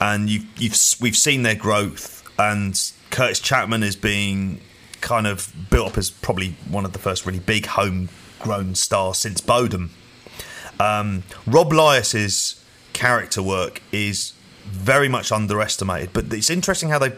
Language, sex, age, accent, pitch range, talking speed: English, male, 30-49, British, 100-125 Hz, 145 wpm